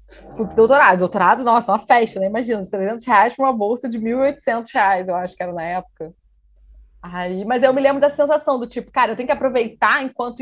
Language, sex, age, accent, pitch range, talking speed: Portuguese, female, 20-39, Brazilian, 190-270 Hz, 205 wpm